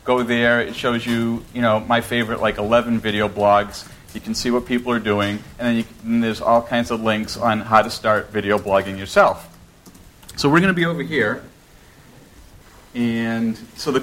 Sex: male